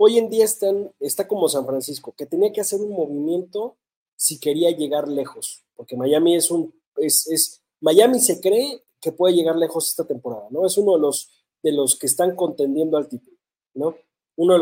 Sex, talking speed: male, 195 wpm